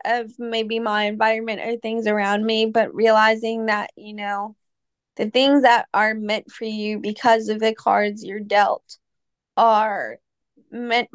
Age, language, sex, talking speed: 20-39, English, female, 150 wpm